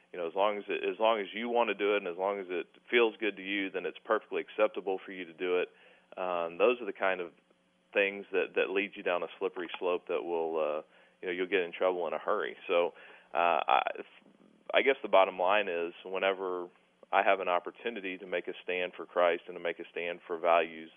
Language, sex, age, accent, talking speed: English, male, 30-49, American, 245 wpm